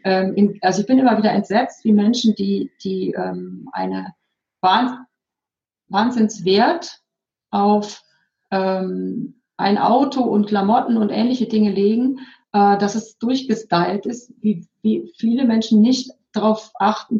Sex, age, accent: female, 40-59, German